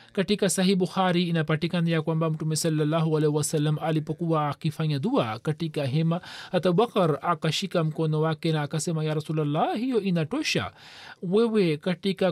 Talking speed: 130 wpm